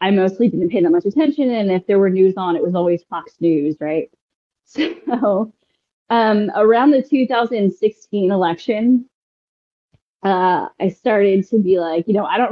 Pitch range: 180-220 Hz